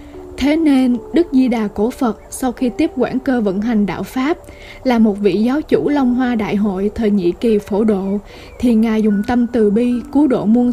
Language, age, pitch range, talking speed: Vietnamese, 20-39, 210-260 Hz, 220 wpm